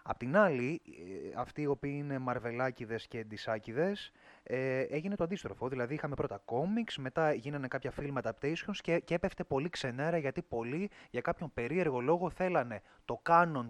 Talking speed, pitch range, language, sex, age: 160 wpm, 120-165 Hz, Greek, male, 20-39